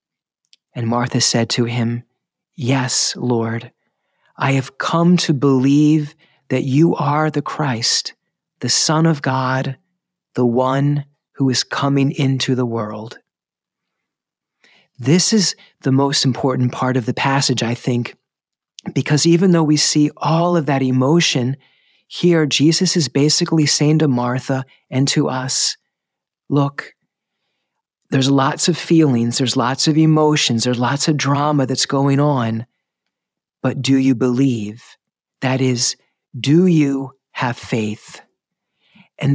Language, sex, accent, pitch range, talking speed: English, male, American, 130-155 Hz, 130 wpm